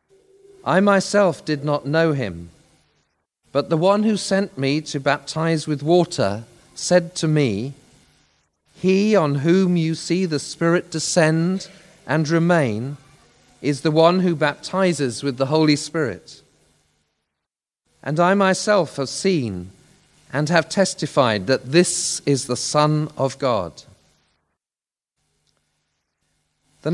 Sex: male